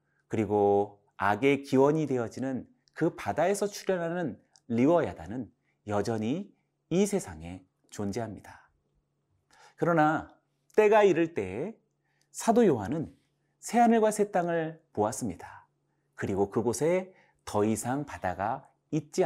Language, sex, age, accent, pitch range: Korean, male, 30-49, native, 115-170 Hz